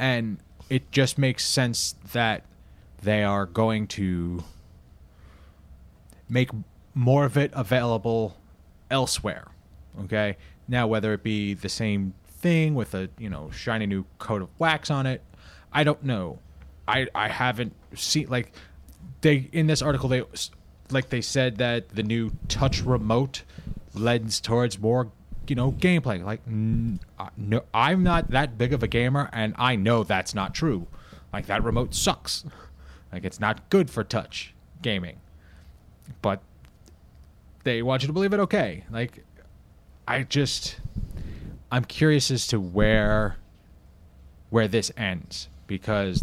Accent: American